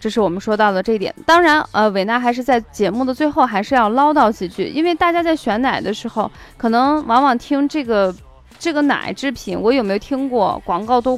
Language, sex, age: Chinese, female, 20-39